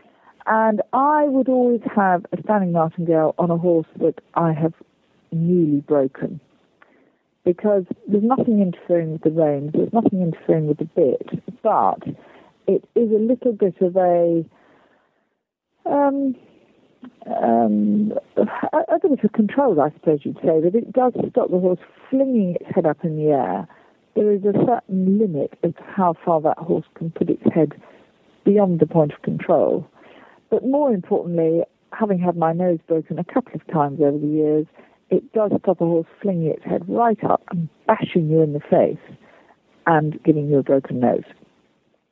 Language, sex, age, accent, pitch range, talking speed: English, female, 50-69, British, 160-220 Hz, 170 wpm